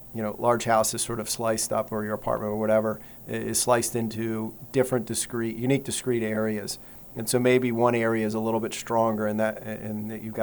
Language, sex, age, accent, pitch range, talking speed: English, male, 40-59, American, 110-120 Hz, 205 wpm